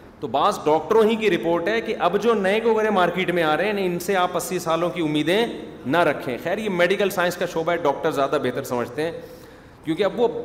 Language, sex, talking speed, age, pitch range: Urdu, male, 240 wpm, 40-59, 160-215 Hz